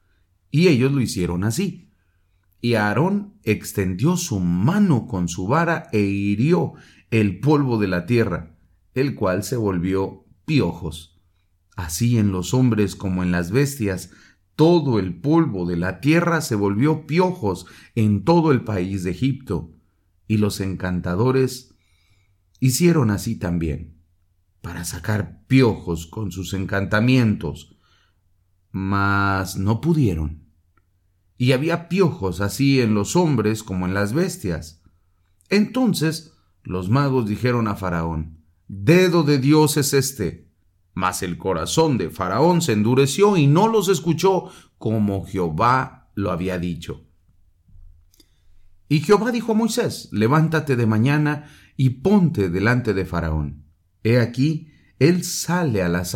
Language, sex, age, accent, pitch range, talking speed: English, male, 40-59, Mexican, 90-140 Hz, 130 wpm